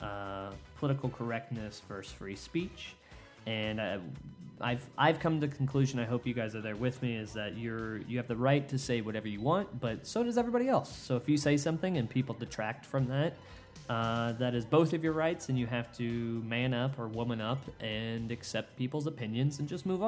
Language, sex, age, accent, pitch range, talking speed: English, male, 20-39, American, 110-135 Hz, 220 wpm